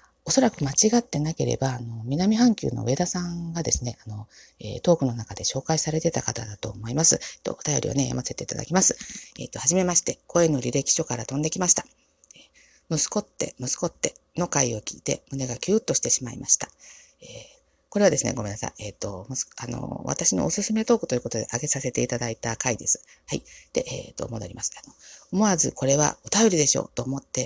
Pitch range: 130-180 Hz